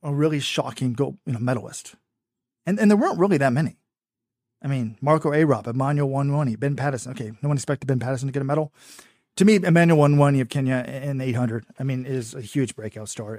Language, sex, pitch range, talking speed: English, male, 125-150 Hz, 210 wpm